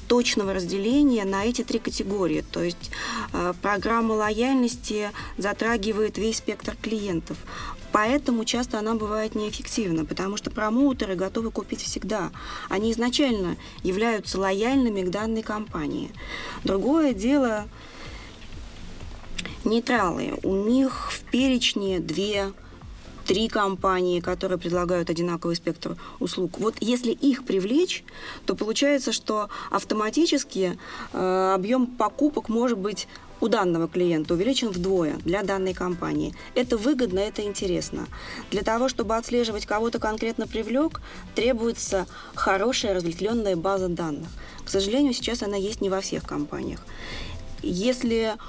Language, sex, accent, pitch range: Russian, female, native, 190-240 Hz